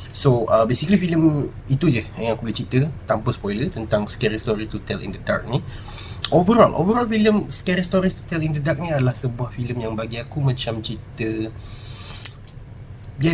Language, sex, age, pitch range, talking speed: Malay, male, 30-49, 105-125 Hz, 185 wpm